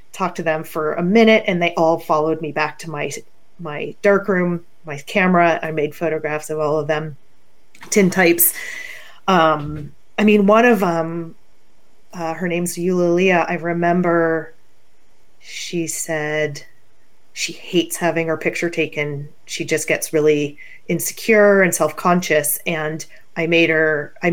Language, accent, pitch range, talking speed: English, American, 155-185 Hz, 150 wpm